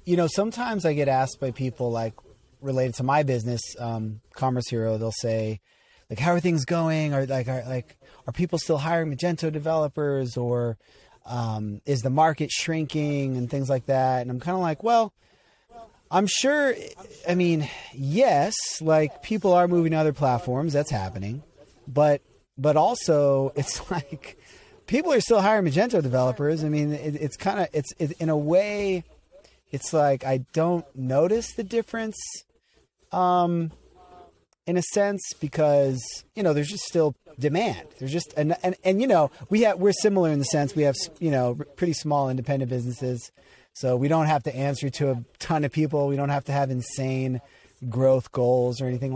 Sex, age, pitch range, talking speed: male, 30-49, 125-170 Hz, 180 wpm